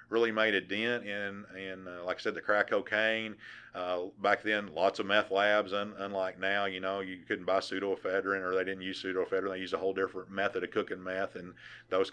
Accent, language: American, English